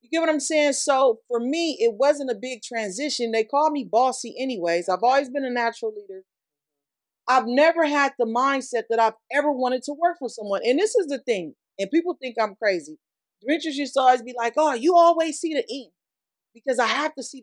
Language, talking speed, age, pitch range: English, 220 wpm, 40-59, 230-300 Hz